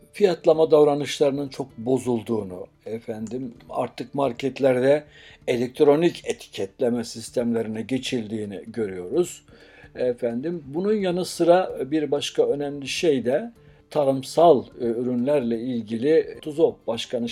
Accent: native